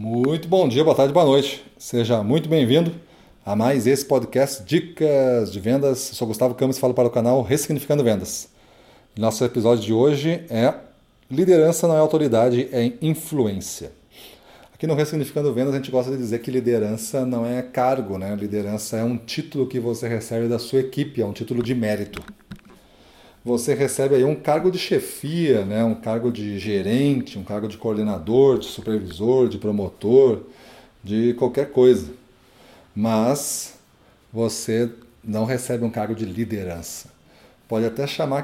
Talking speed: 160 wpm